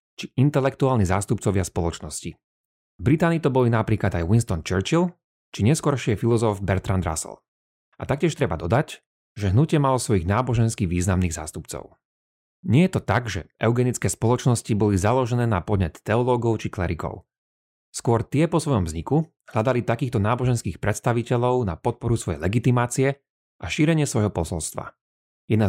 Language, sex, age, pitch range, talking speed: Slovak, male, 30-49, 95-130 Hz, 140 wpm